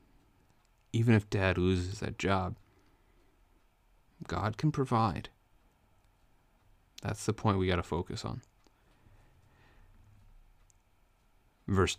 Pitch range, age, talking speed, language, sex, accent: 90-105 Hz, 30-49, 90 wpm, English, male, American